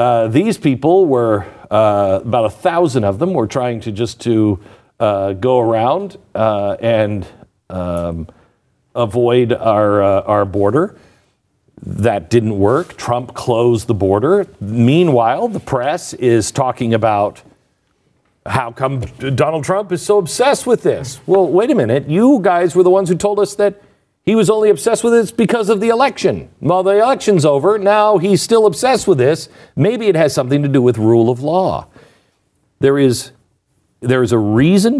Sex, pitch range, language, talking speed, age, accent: male, 115-175 Hz, English, 165 wpm, 50-69, American